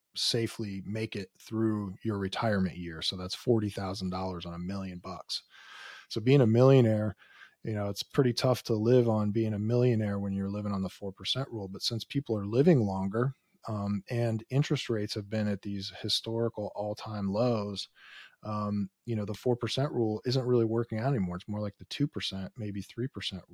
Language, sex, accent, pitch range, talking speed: English, male, American, 100-125 Hz, 185 wpm